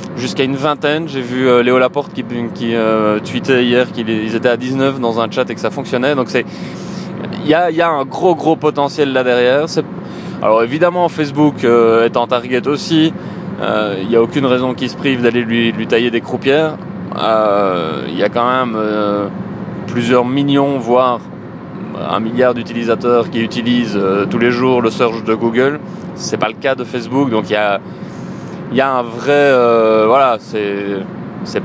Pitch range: 115-150 Hz